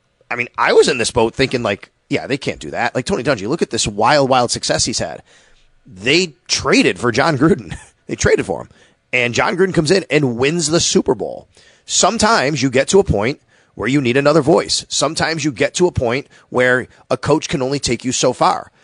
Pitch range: 130-175 Hz